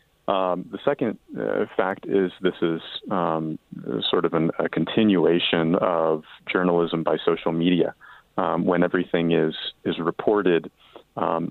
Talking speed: 135 wpm